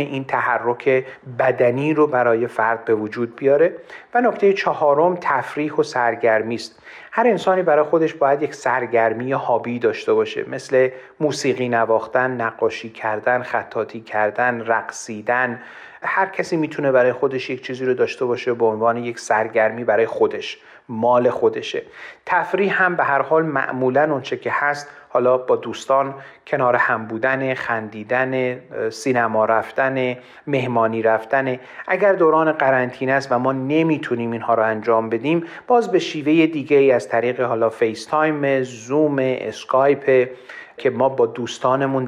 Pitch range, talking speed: 115-145 Hz, 145 wpm